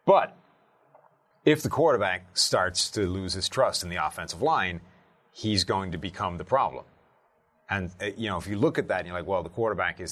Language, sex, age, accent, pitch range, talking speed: English, male, 30-49, American, 85-105 Hz, 200 wpm